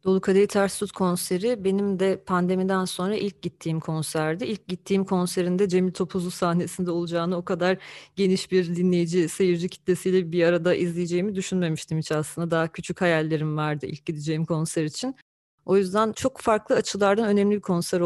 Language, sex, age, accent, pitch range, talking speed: Turkish, female, 30-49, native, 160-190 Hz, 155 wpm